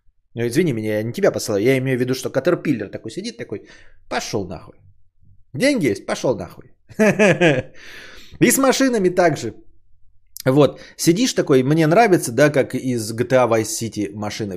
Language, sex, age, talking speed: Bulgarian, male, 20-39, 155 wpm